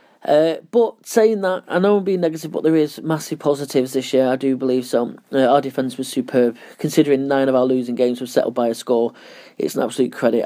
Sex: male